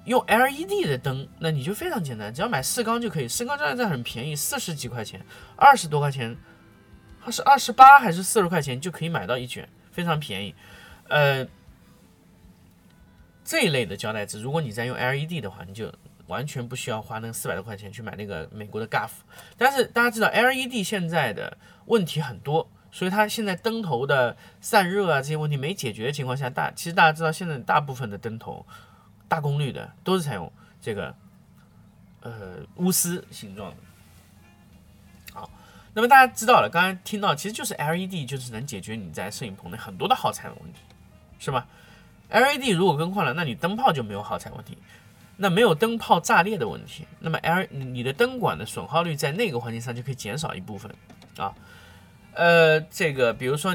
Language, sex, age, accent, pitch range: Chinese, male, 20-39, native, 120-190 Hz